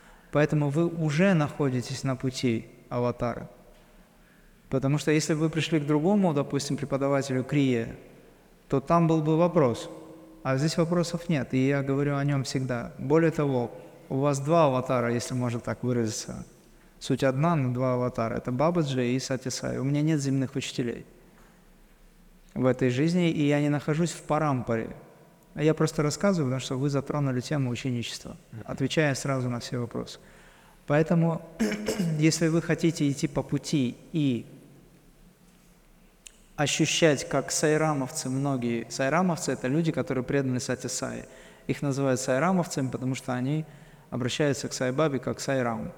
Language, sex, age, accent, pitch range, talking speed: Russian, male, 20-39, native, 130-165 Hz, 145 wpm